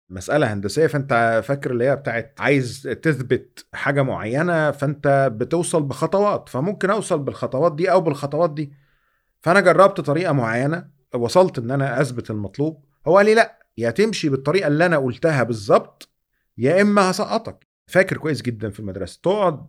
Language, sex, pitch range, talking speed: Arabic, male, 130-170 Hz, 150 wpm